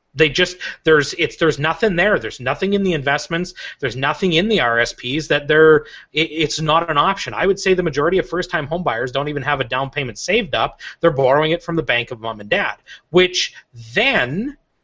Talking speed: 210 wpm